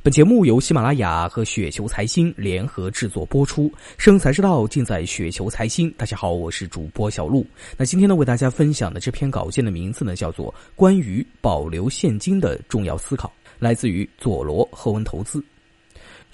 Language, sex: Chinese, male